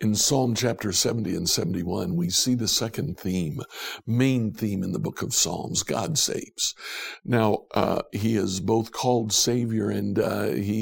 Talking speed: 165 wpm